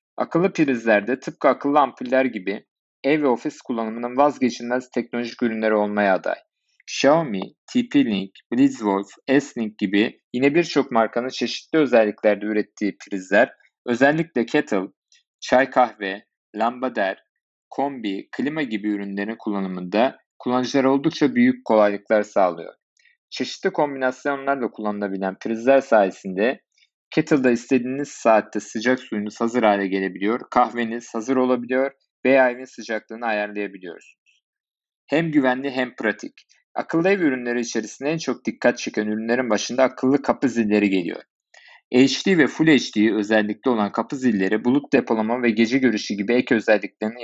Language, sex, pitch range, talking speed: Turkish, male, 110-135 Hz, 120 wpm